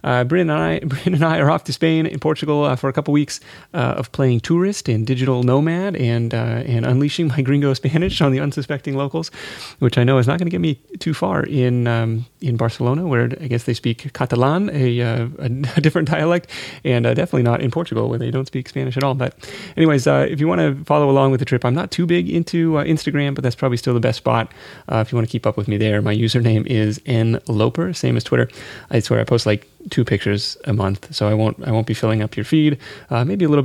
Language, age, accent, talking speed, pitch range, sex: English, 30-49, American, 255 wpm, 125-165 Hz, male